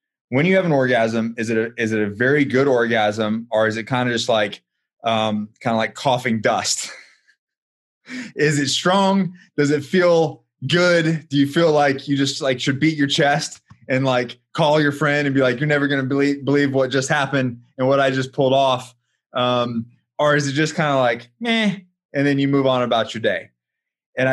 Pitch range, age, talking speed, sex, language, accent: 120-150 Hz, 20-39, 210 wpm, male, English, American